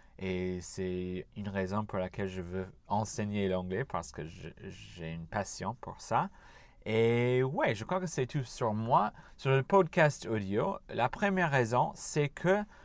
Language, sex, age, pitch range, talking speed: French, male, 30-49, 100-135 Hz, 170 wpm